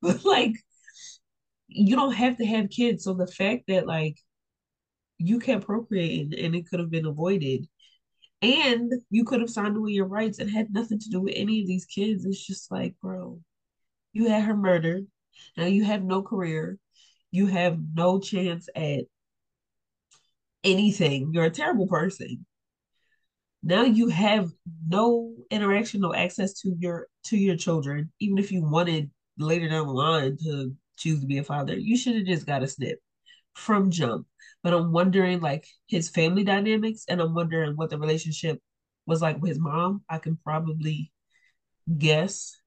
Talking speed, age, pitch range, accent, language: 165 wpm, 20-39, 155-200 Hz, American, English